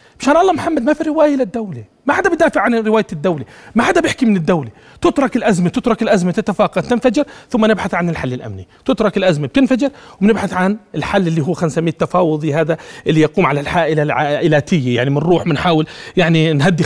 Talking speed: 180 wpm